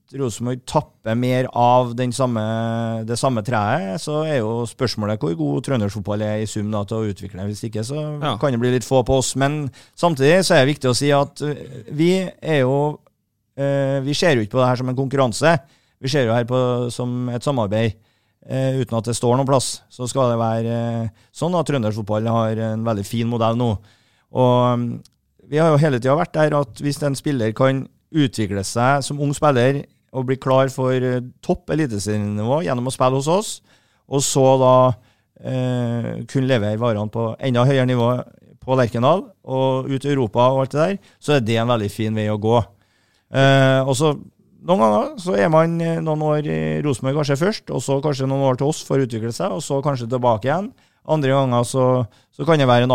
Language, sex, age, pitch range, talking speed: English, male, 30-49, 115-140 Hz, 205 wpm